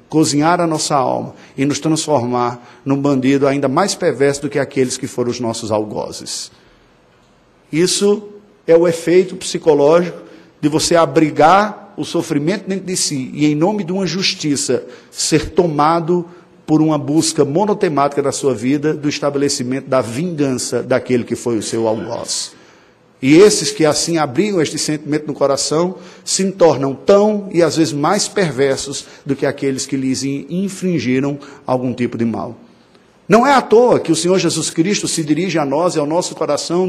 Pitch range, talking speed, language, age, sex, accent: 140-175 Hz, 165 wpm, Portuguese, 50-69, male, Brazilian